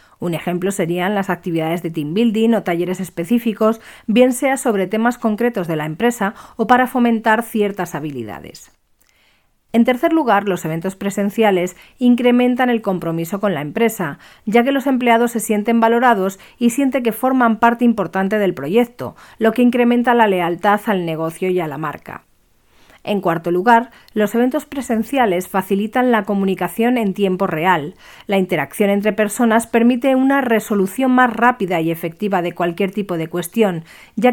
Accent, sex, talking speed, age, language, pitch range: Spanish, female, 160 wpm, 40-59, Spanish, 180-235 Hz